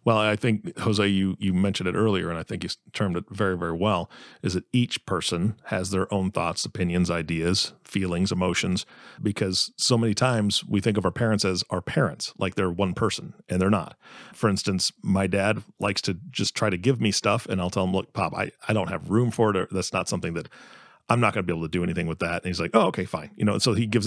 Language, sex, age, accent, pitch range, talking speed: English, male, 40-59, American, 90-110 Hz, 250 wpm